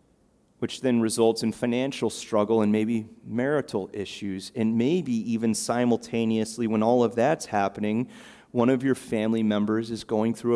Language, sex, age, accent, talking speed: English, male, 30-49, American, 155 wpm